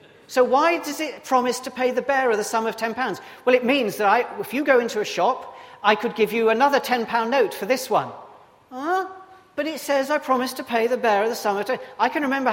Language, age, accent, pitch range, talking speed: English, 40-59, British, 190-245 Hz, 235 wpm